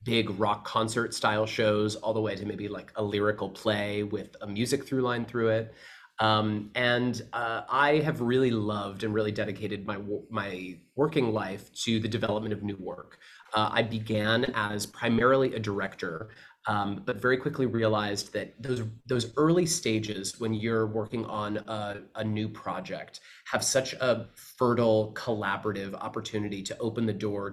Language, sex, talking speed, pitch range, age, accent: English, male, 165 wpm, 105-120 Hz, 30-49, American